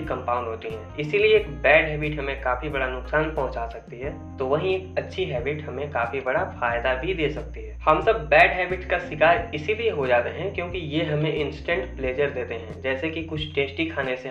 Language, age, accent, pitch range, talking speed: Hindi, 20-39, native, 130-160 Hz, 210 wpm